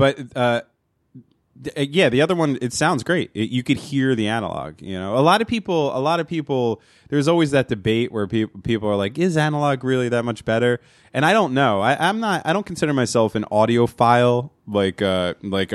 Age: 20-39